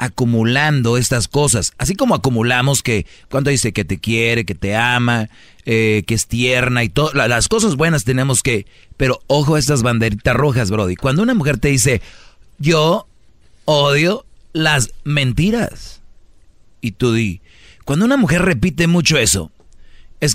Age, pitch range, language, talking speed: 40-59, 110-150 Hz, Spanish, 155 wpm